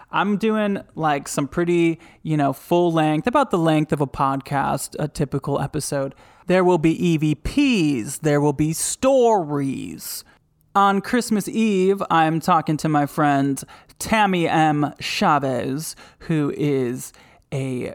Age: 20-39